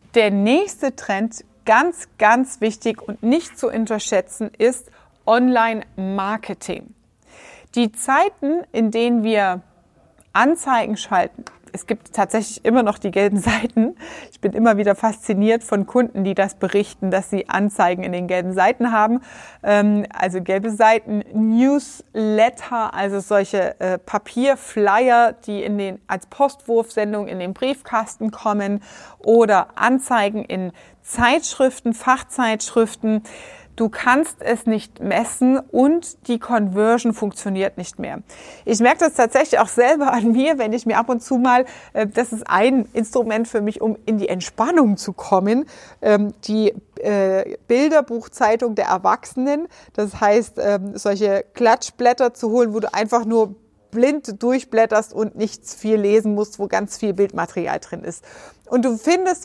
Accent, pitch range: German, 205-245 Hz